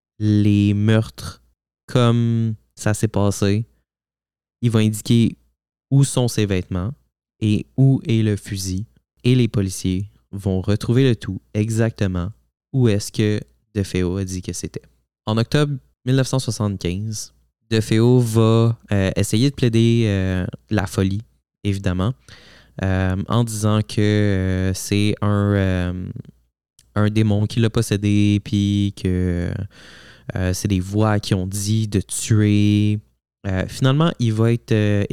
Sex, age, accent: male, 20-39, Canadian